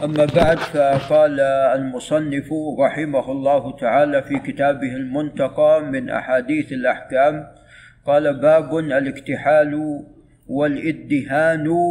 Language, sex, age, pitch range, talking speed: Arabic, male, 50-69, 145-170 Hz, 85 wpm